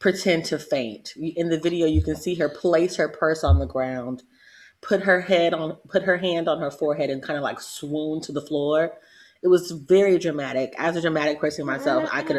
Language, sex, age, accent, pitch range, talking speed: English, female, 30-49, American, 105-165 Hz, 220 wpm